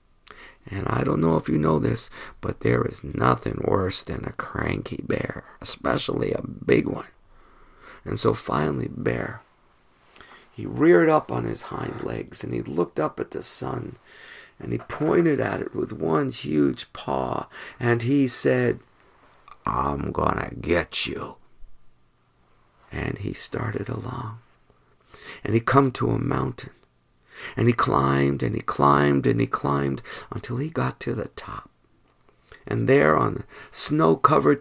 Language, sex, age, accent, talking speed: English, male, 50-69, American, 150 wpm